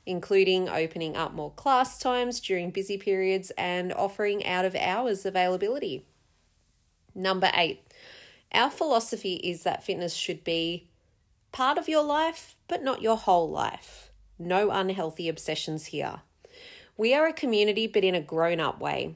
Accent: Australian